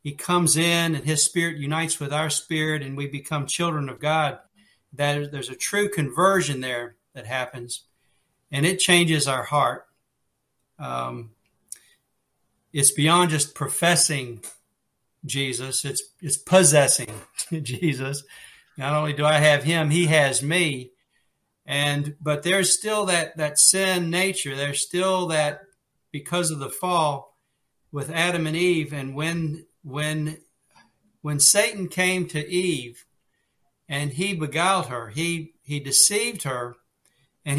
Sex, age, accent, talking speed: male, 60-79, American, 135 wpm